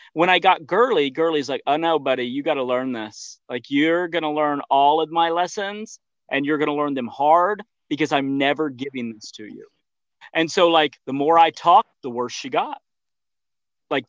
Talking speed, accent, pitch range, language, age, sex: 210 wpm, American, 135-165 Hz, English, 40-59, male